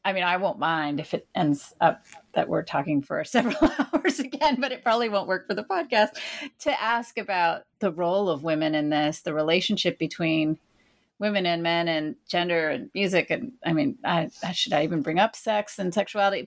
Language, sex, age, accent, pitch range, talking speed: English, female, 30-49, American, 160-215 Hz, 200 wpm